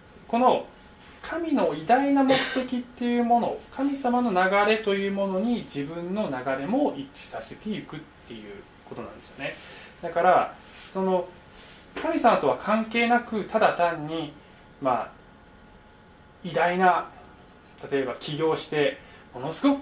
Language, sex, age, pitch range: Japanese, male, 20-39, 170-255 Hz